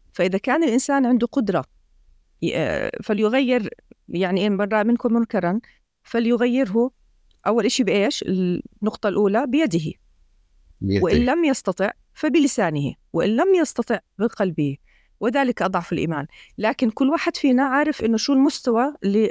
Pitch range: 195-275 Hz